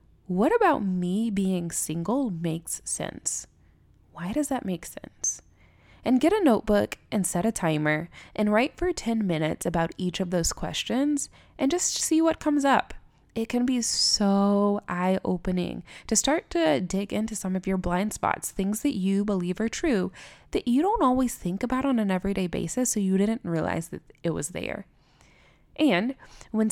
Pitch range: 180-250 Hz